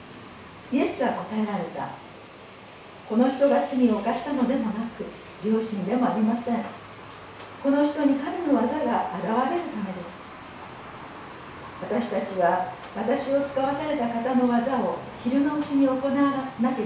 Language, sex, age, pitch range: Japanese, female, 40-59, 210-270 Hz